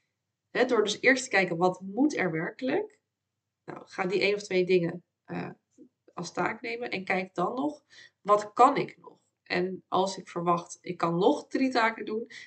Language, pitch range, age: Dutch, 180-245 Hz, 20-39